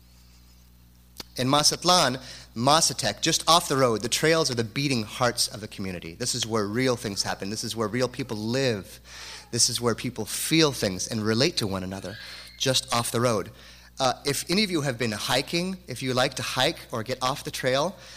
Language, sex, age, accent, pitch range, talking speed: English, male, 30-49, American, 95-130 Hz, 200 wpm